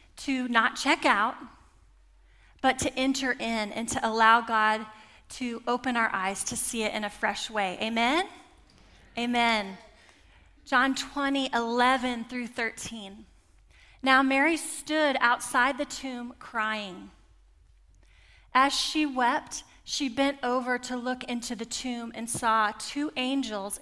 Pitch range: 215-265 Hz